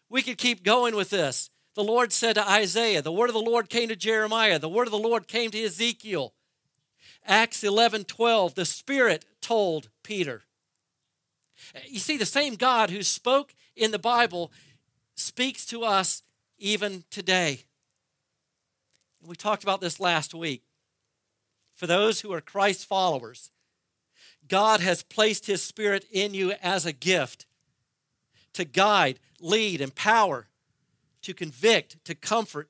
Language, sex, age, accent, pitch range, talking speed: English, male, 50-69, American, 155-220 Hz, 150 wpm